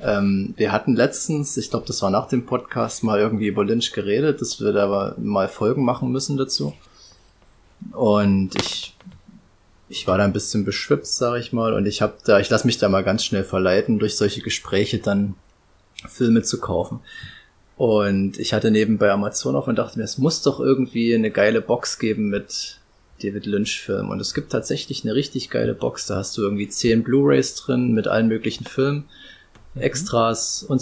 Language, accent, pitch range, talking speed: German, German, 100-120 Hz, 185 wpm